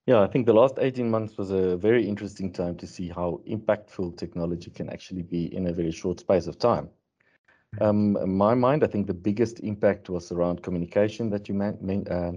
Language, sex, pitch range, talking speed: English, male, 90-105 Hz, 205 wpm